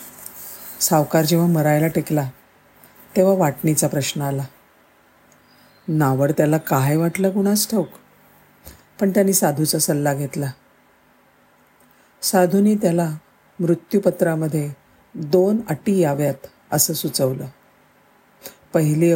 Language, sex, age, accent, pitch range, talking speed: Marathi, female, 50-69, native, 150-185 Hz, 90 wpm